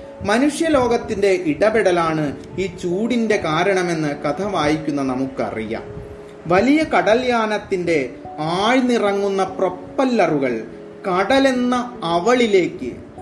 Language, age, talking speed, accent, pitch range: Malayalam, 30-49, 70 wpm, native, 140-230 Hz